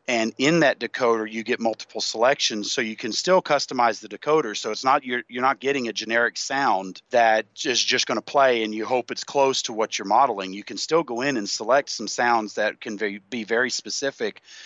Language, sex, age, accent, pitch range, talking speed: English, male, 40-59, American, 110-130 Hz, 220 wpm